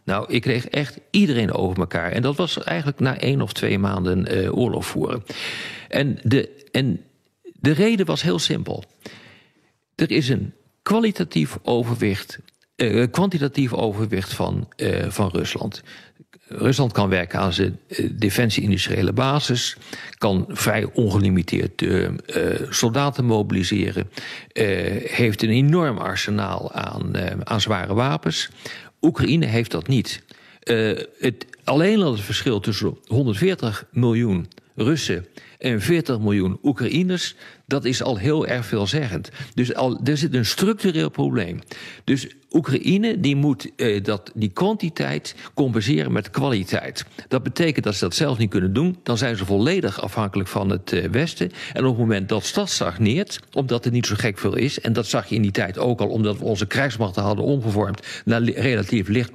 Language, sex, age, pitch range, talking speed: Dutch, male, 50-69, 100-140 Hz, 155 wpm